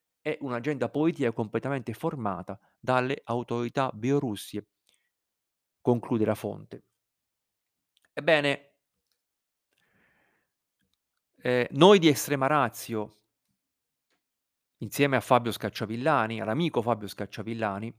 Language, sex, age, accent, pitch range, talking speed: Italian, male, 40-59, native, 110-140 Hz, 80 wpm